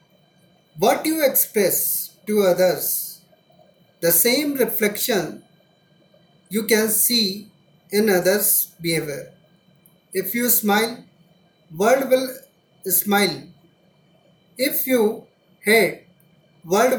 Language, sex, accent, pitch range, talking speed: Hindi, male, native, 175-225 Hz, 85 wpm